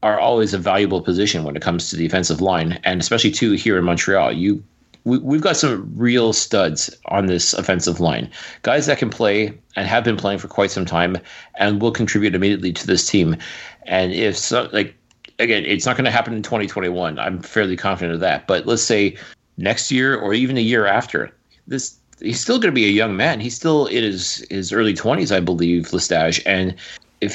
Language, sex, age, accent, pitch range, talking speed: English, male, 30-49, American, 95-120 Hz, 205 wpm